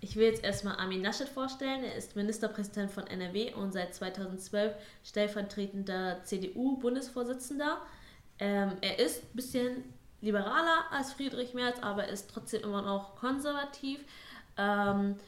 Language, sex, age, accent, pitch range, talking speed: German, female, 20-39, German, 195-230 Hz, 130 wpm